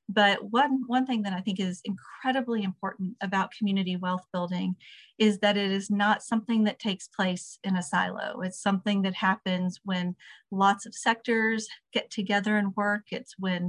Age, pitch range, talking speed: 40-59, 190-220 Hz, 175 wpm